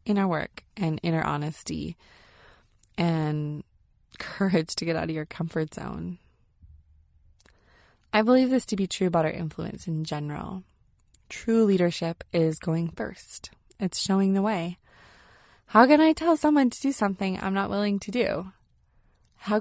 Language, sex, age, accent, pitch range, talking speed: English, female, 20-39, American, 155-195 Hz, 145 wpm